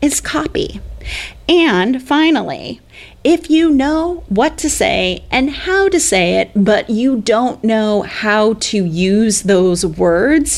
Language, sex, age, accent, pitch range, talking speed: English, female, 30-49, American, 190-245 Hz, 135 wpm